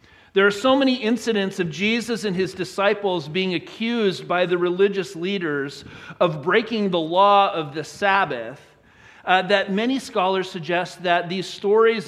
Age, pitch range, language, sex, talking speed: 40-59, 160-220 Hz, English, male, 155 wpm